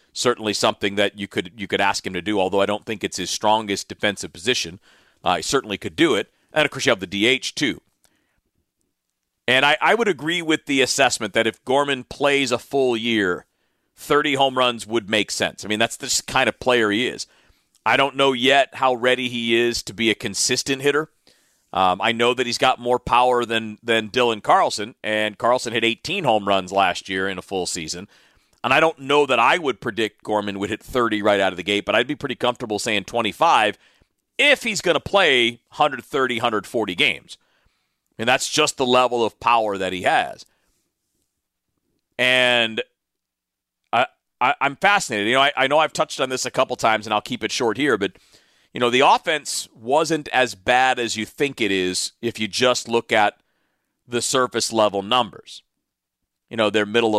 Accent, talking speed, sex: American, 200 wpm, male